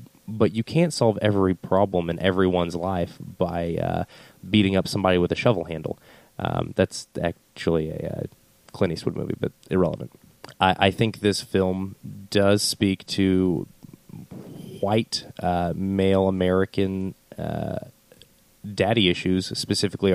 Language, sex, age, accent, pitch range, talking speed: English, male, 20-39, American, 90-105 Hz, 130 wpm